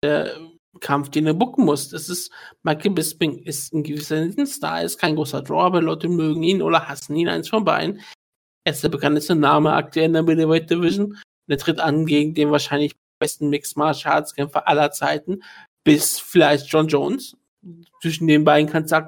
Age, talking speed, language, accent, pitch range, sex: 50-69, 185 wpm, German, German, 150-170 Hz, male